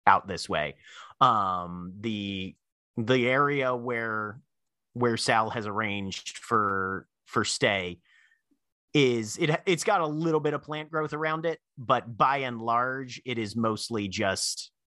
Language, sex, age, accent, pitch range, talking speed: English, male, 30-49, American, 95-135 Hz, 140 wpm